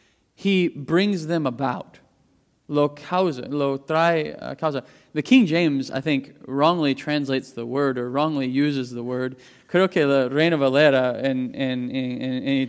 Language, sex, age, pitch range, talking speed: English, male, 20-39, 135-185 Hz, 150 wpm